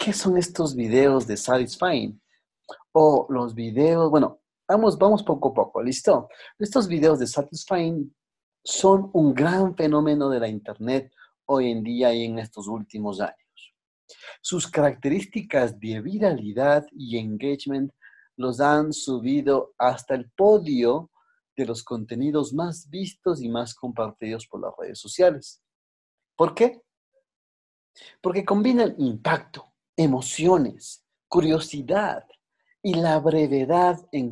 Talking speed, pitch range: 125 wpm, 120-165 Hz